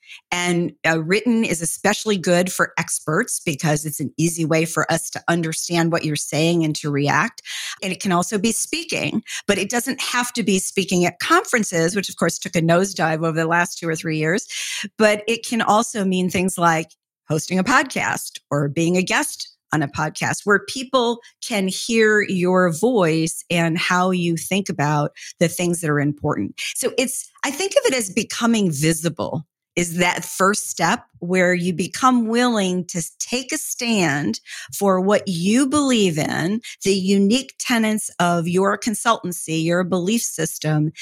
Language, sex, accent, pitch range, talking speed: English, female, American, 170-225 Hz, 175 wpm